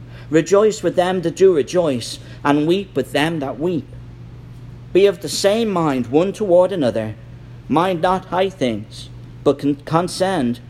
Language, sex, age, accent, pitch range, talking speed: English, male, 50-69, British, 120-165 Hz, 145 wpm